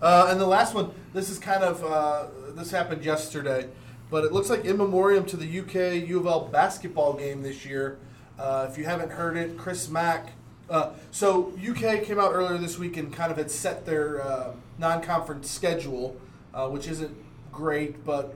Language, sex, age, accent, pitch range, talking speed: English, male, 20-39, American, 150-195 Hz, 185 wpm